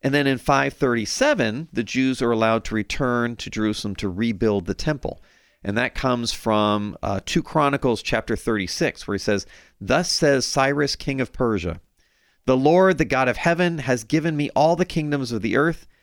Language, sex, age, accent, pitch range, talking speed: English, male, 40-59, American, 110-155 Hz, 185 wpm